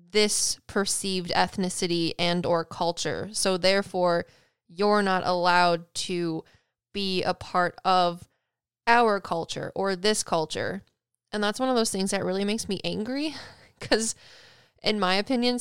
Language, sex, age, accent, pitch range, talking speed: English, female, 20-39, American, 175-215 Hz, 140 wpm